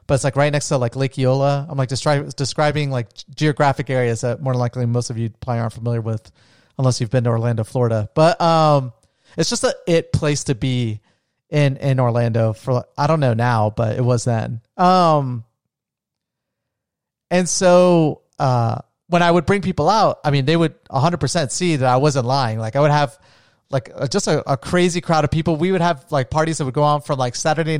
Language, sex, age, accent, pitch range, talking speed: English, male, 30-49, American, 130-160 Hz, 210 wpm